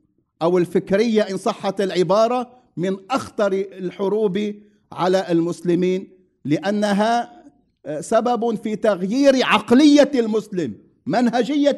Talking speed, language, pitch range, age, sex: 85 wpm, English, 170-240 Hz, 50-69, male